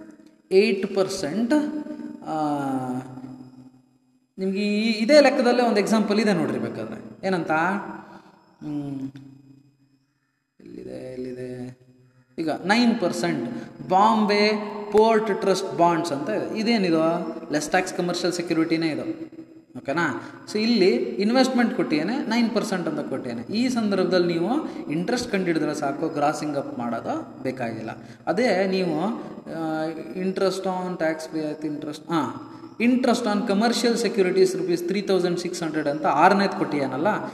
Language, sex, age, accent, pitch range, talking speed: Kannada, male, 20-39, native, 155-225 Hz, 110 wpm